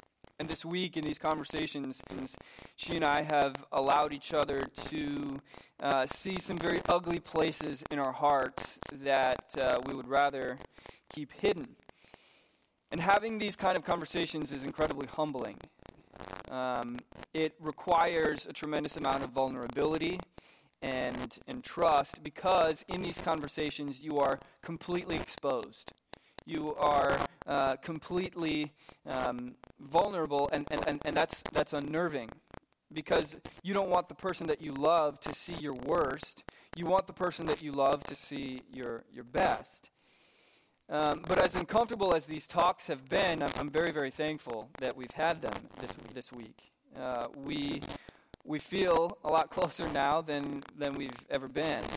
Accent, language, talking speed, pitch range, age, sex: American, English, 150 wpm, 140-165 Hz, 20-39, male